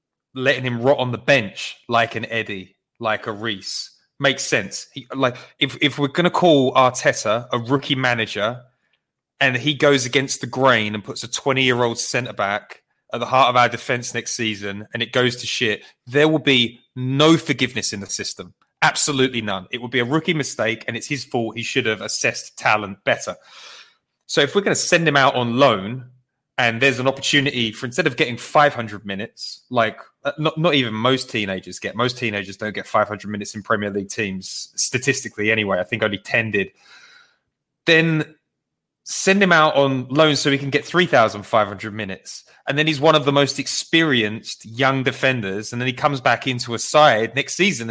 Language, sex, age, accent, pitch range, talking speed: English, male, 20-39, British, 110-145 Hz, 190 wpm